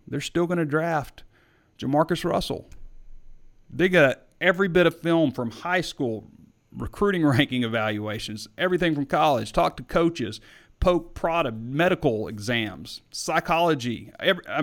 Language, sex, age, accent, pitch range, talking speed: English, male, 40-59, American, 100-130 Hz, 125 wpm